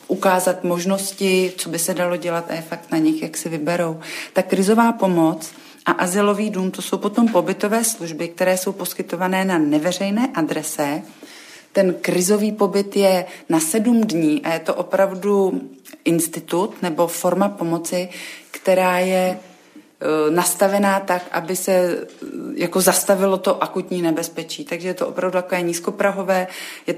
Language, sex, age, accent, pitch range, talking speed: Czech, female, 40-59, native, 165-185 Hz, 145 wpm